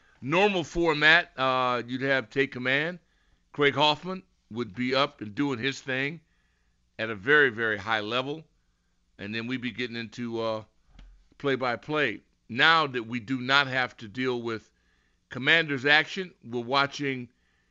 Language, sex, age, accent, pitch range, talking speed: English, male, 50-69, American, 105-140 Hz, 145 wpm